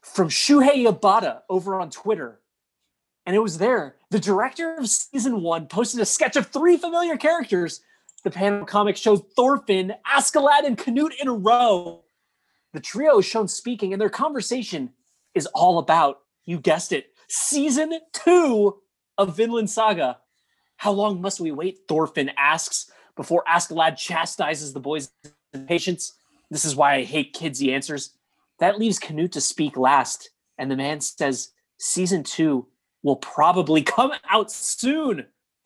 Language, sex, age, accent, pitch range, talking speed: English, male, 30-49, American, 175-290 Hz, 150 wpm